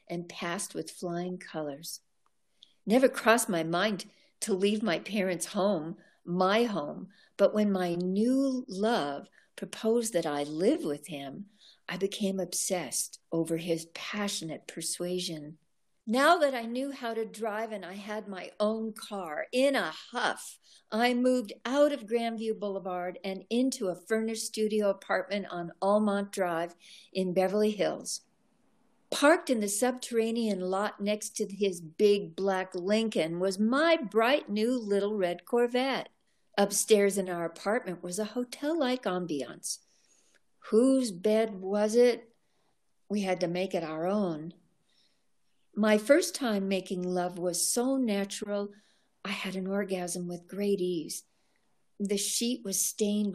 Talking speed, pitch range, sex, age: 140 wpm, 180-225 Hz, female, 60-79